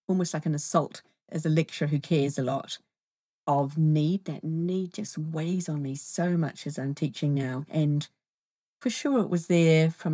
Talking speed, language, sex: 190 wpm, English, female